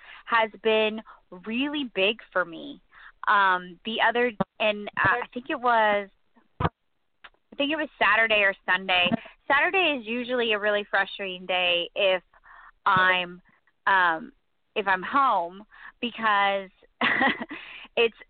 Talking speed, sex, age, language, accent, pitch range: 120 wpm, female, 20-39, English, American, 200-245 Hz